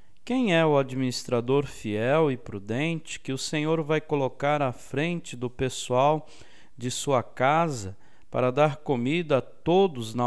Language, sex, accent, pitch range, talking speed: Portuguese, male, Brazilian, 120-165 Hz, 145 wpm